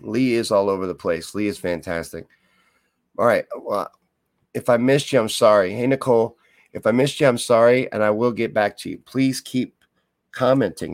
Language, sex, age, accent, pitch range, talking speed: English, male, 50-69, American, 95-135 Hz, 195 wpm